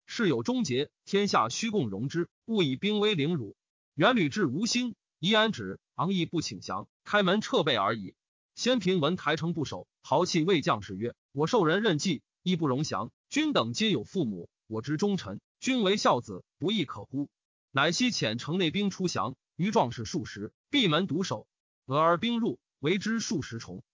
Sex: male